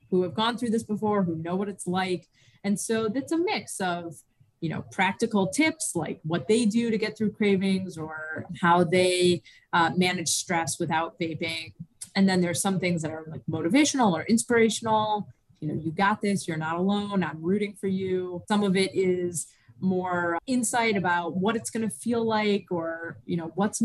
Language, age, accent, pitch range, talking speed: English, 30-49, American, 170-210 Hz, 195 wpm